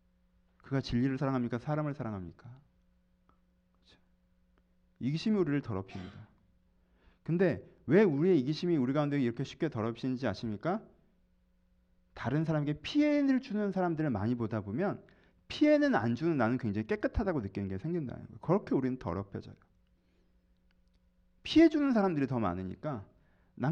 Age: 40-59